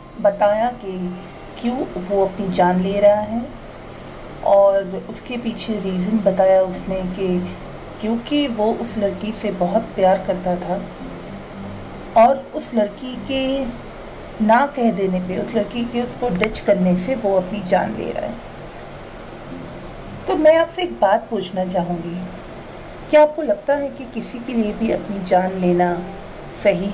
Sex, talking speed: female, 145 wpm